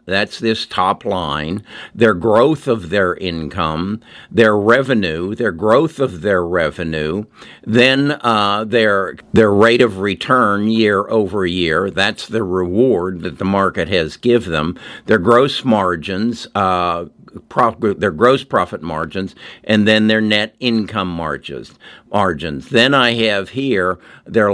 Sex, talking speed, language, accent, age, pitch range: male, 130 wpm, English, American, 50-69, 95-115 Hz